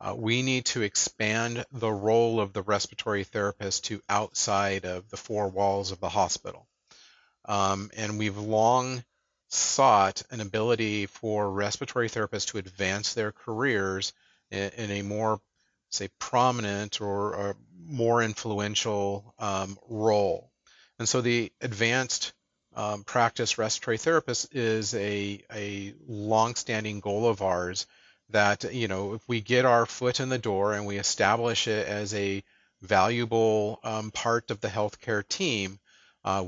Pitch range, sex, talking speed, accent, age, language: 100-115 Hz, male, 140 wpm, American, 40-59, English